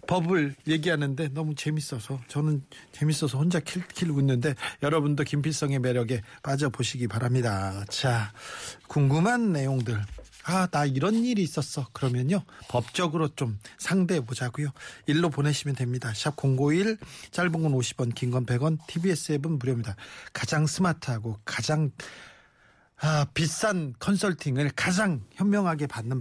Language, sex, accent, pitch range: Korean, male, native, 130-170 Hz